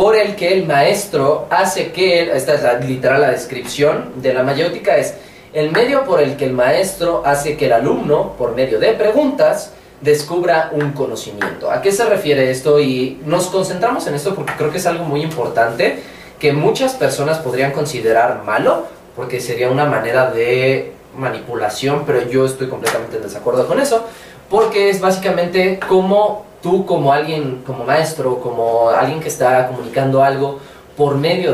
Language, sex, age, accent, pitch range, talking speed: Spanish, male, 20-39, Mexican, 140-200 Hz, 170 wpm